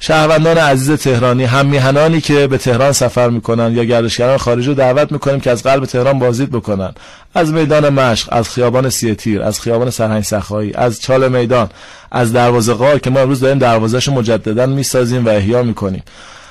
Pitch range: 120-145 Hz